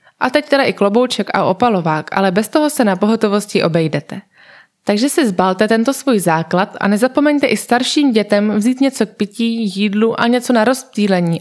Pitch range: 190-245 Hz